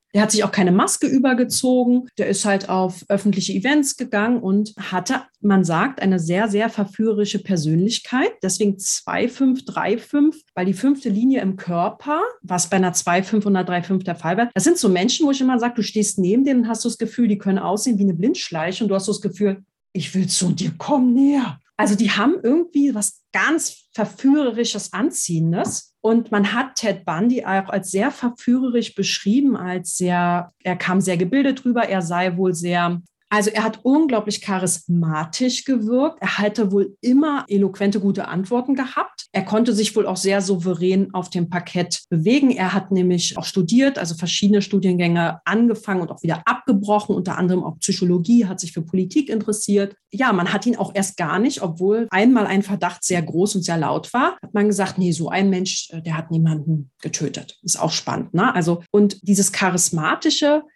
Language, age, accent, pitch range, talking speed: German, 40-59, German, 185-235 Hz, 180 wpm